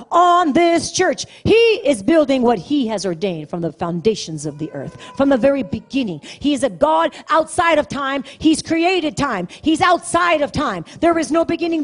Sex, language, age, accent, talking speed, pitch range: female, English, 40-59, American, 195 wpm, 180-275 Hz